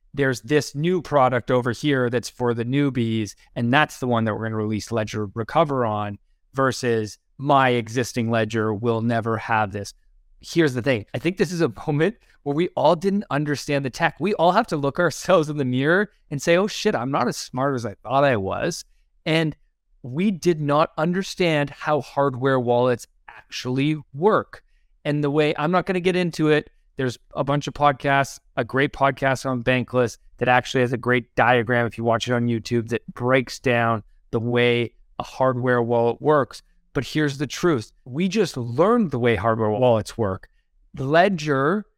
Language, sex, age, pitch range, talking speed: English, male, 30-49, 120-160 Hz, 190 wpm